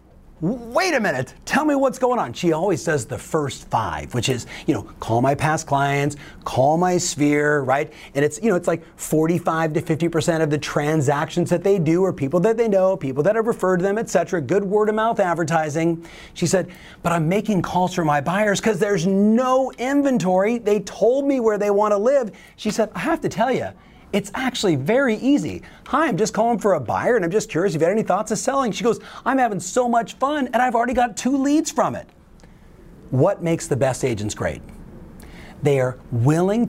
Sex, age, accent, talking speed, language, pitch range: male, 40-59, American, 220 wpm, English, 160-220 Hz